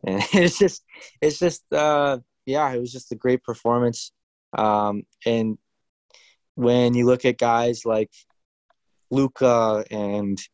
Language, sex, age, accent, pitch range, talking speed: English, male, 20-39, American, 115-140 Hz, 130 wpm